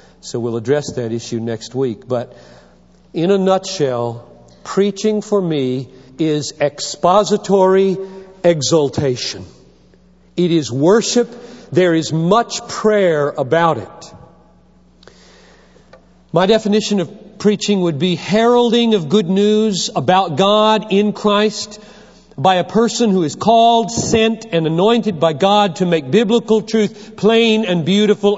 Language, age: English, 40-59